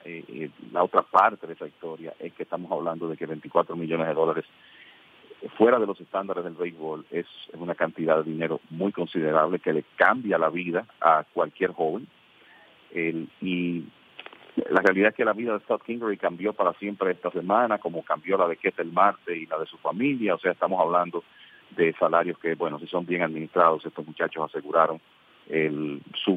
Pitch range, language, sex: 80-95 Hz, English, male